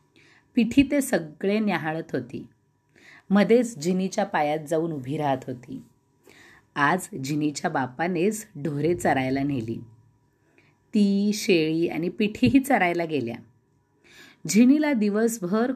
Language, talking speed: Marathi, 100 wpm